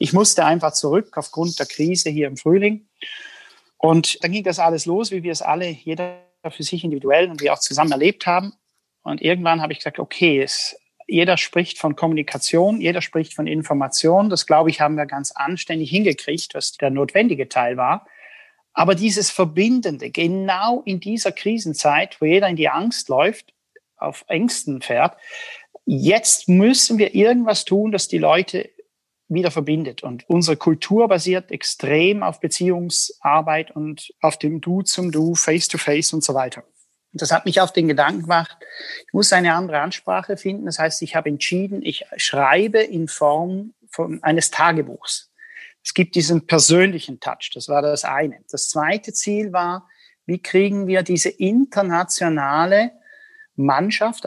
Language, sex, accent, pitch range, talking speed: German, male, German, 155-205 Hz, 160 wpm